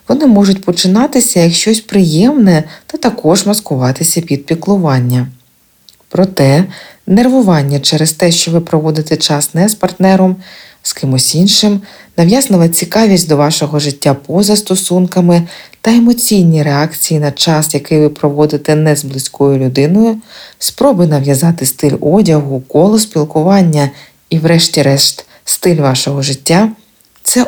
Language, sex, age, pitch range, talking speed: Ukrainian, female, 40-59, 145-195 Hz, 125 wpm